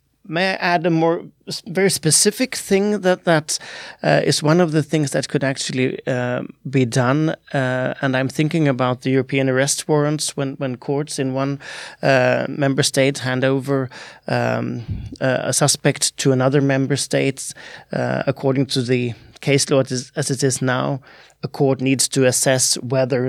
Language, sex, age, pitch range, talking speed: Swedish, male, 30-49, 125-140 Hz, 165 wpm